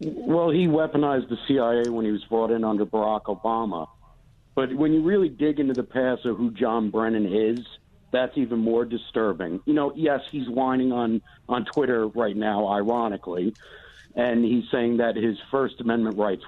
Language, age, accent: English, 50-69, American